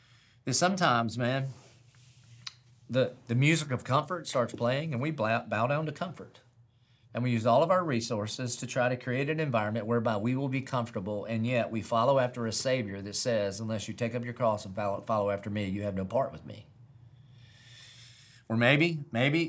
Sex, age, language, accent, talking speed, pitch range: male, 40-59, English, American, 190 wpm, 115-135 Hz